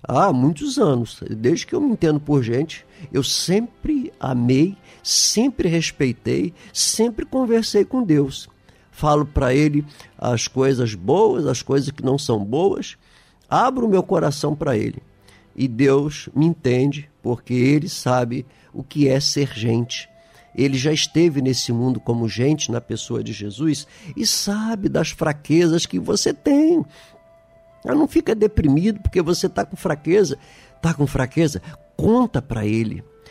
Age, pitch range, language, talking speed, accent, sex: 50-69, 125-175 Hz, Portuguese, 145 wpm, Brazilian, male